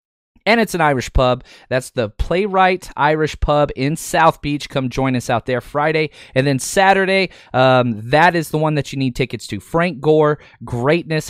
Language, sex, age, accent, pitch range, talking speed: English, male, 20-39, American, 120-160 Hz, 185 wpm